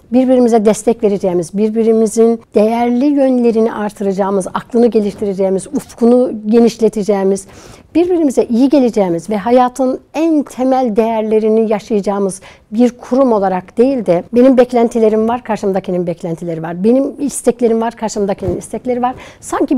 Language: Turkish